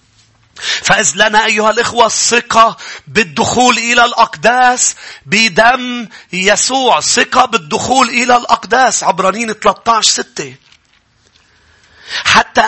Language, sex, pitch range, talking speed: English, male, 180-265 Hz, 85 wpm